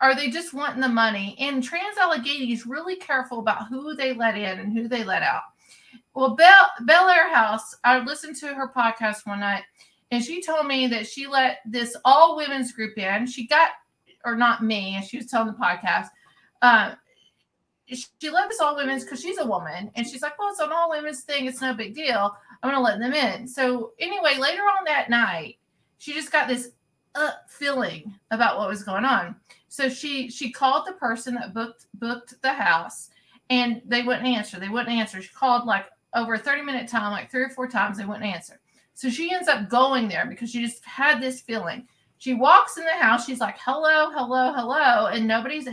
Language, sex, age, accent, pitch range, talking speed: English, female, 40-59, American, 230-285 Hz, 205 wpm